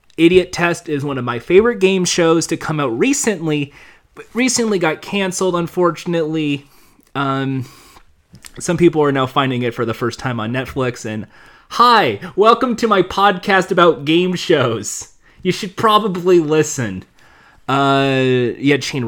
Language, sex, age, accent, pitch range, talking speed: English, male, 30-49, American, 130-180 Hz, 150 wpm